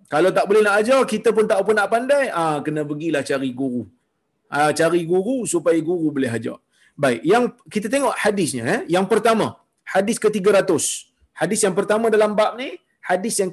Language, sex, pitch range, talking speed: Malayalam, male, 190-230 Hz, 180 wpm